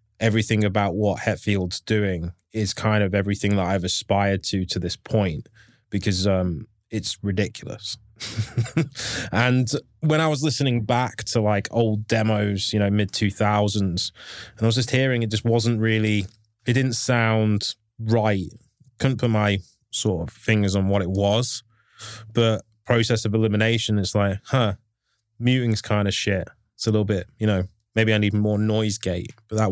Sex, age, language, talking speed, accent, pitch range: male, 20-39, English, 165 wpm, British, 105-115 Hz